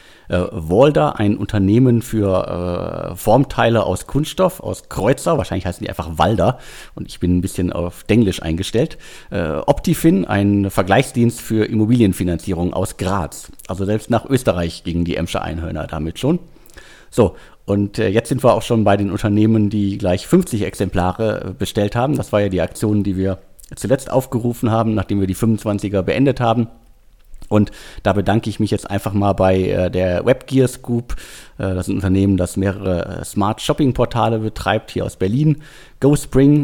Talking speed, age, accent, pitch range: 160 wpm, 50-69, German, 95-125 Hz